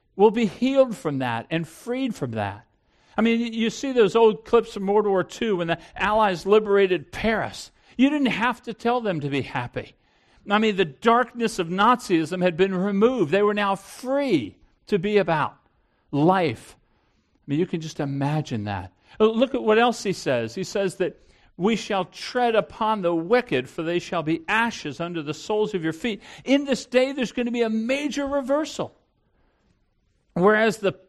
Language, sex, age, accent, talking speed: English, male, 50-69, American, 185 wpm